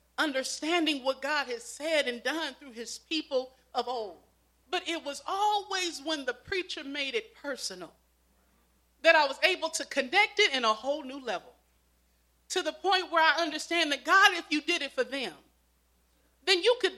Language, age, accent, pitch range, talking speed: English, 40-59, American, 230-320 Hz, 180 wpm